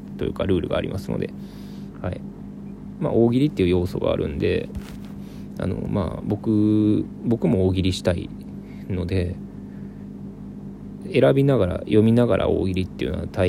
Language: Japanese